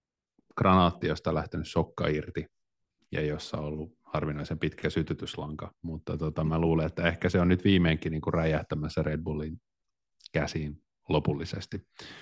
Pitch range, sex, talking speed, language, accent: 80-90 Hz, male, 140 wpm, Finnish, native